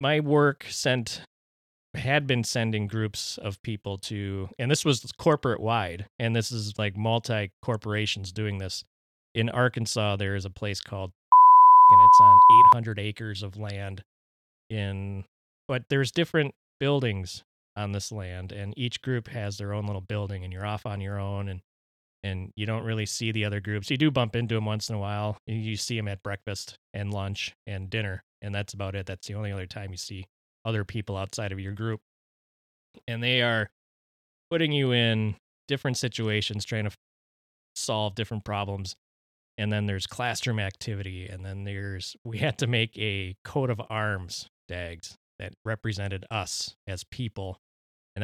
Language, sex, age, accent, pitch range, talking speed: English, male, 30-49, American, 95-115 Hz, 170 wpm